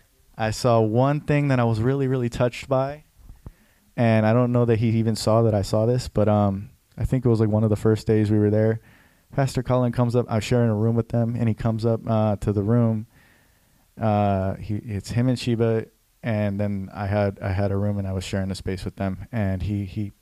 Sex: male